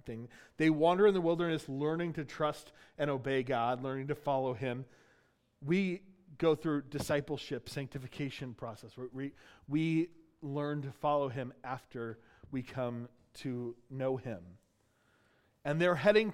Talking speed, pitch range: 130 wpm, 120-155 Hz